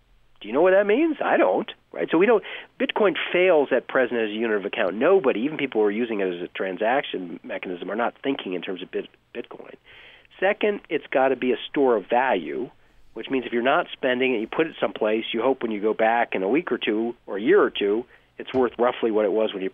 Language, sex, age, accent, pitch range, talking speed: English, male, 40-59, American, 110-175 Hz, 250 wpm